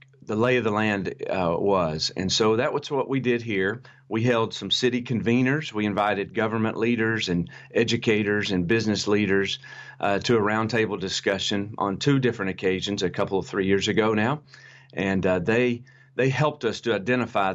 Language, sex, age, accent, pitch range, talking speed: English, male, 40-59, American, 95-120 Hz, 185 wpm